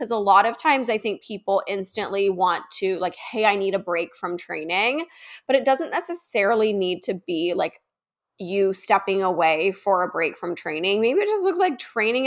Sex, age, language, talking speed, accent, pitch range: female, 10-29, English, 200 wpm, American, 195-265 Hz